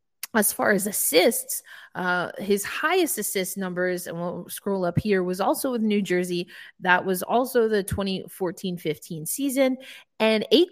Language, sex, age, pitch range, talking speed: English, female, 20-39, 190-265 Hz, 150 wpm